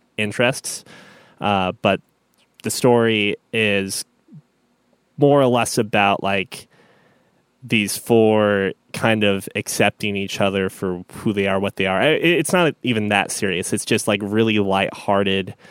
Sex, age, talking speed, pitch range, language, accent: male, 20-39, 135 wpm, 95-115 Hz, English, American